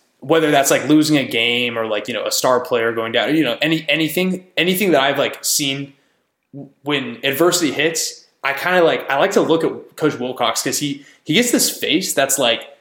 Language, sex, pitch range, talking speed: English, male, 115-155 Hz, 215 wpm